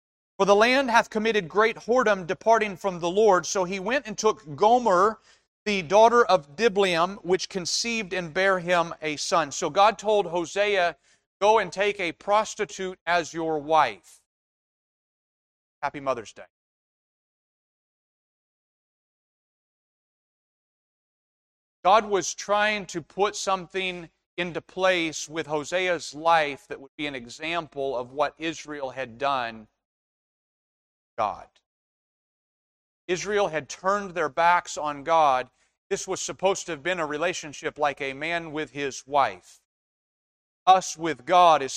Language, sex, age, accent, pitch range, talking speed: English, male, 40-59, American, 150-190 Hz, 130 wpm